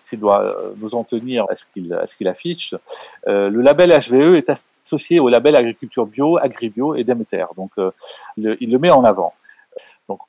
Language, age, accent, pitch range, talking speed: French, 40-59, French, 105-155 Hz, 200 wpm